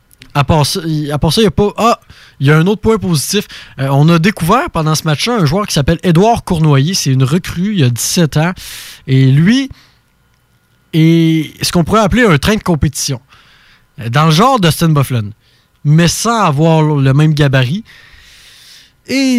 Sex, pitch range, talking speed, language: male, 140-185 Hz, 190 wpm, French